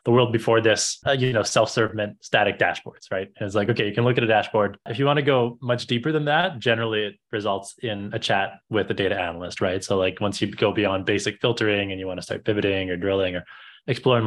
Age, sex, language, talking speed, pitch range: 20-39, male, English, 250 wpm, 100-120 Hz